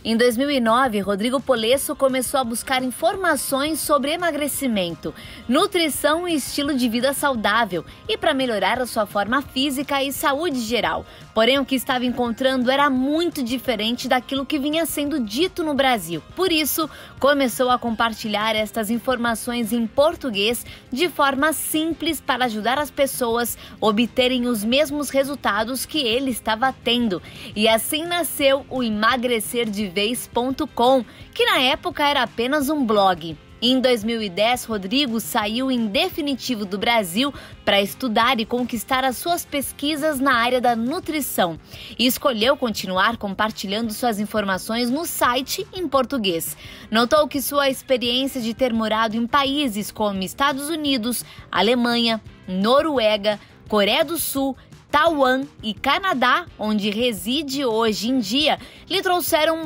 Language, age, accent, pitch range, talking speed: Portuguese, 20-39, Brazilian, 230-285 Hz, 135 wpm